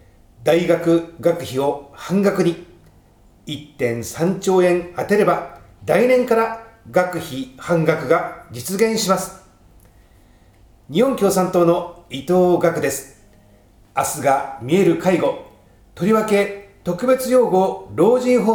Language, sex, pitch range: Japanese, male, 130-190 Hz